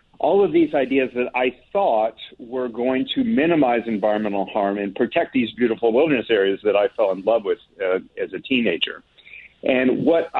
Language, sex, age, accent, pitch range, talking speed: English, male, 50-69, American, 110-155 Hz, 180 wpm